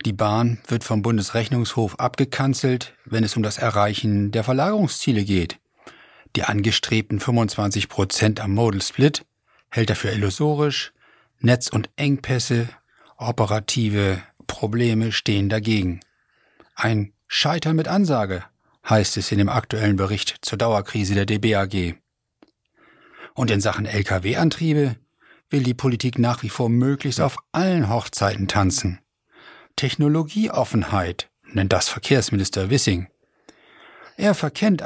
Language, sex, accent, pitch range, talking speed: German, male, German, 105-145 Hz, 115 wpm